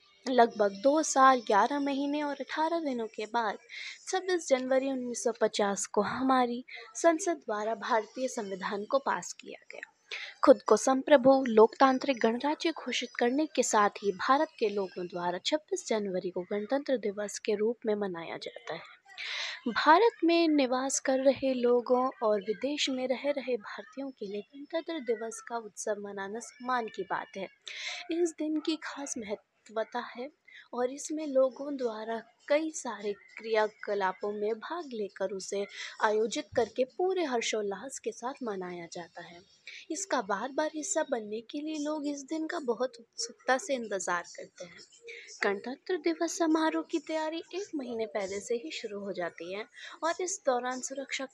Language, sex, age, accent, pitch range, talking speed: Hindi, female, 20-39, native, 220-300 Hz, 155 wpm